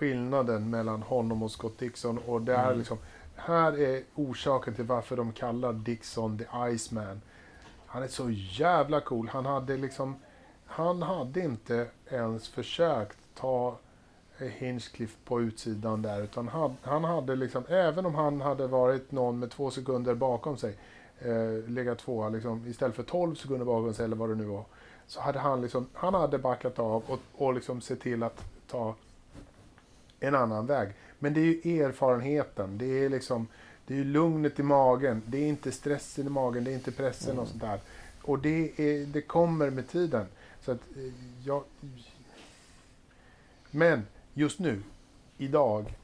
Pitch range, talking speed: 115-140 Hz, 165 wpm